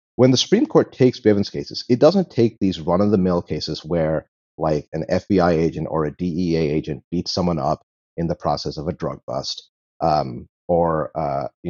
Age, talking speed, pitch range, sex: 30-49, 200 wpm, 85-115 Hz, male